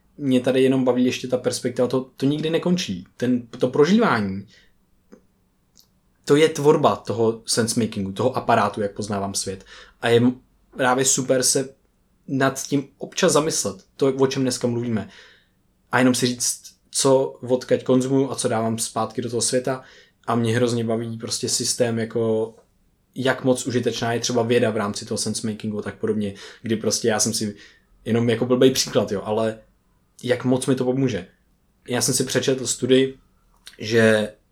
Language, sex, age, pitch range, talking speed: Czech, male, 20-39, 110-130 Hz, 165 wpm